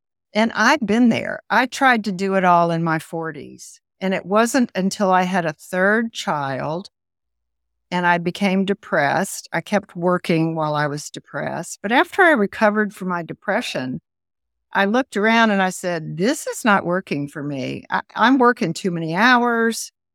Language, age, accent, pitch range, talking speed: English, 50-69, American, 165-215 Hz, 175 wpm